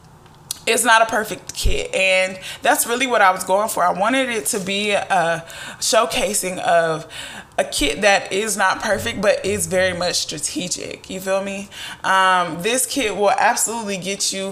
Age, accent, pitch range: 20-39, American, 170-205 Hz